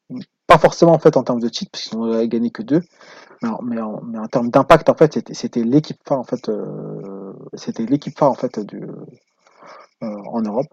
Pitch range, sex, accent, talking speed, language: 120-155 Hz, male, French, 220 wpm, French